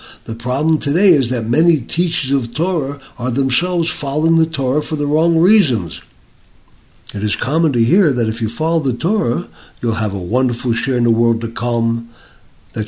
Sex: male